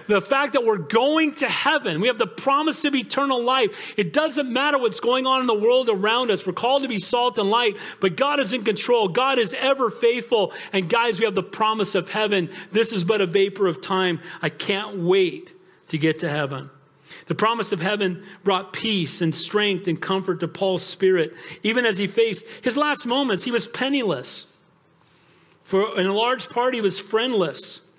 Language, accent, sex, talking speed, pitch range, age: English, American, male, 200 wpm, 165-225 Hz, 40-59